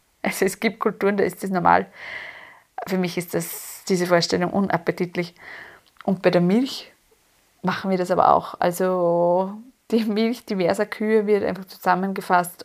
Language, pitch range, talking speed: German, 180-220 Hz, 145 wpm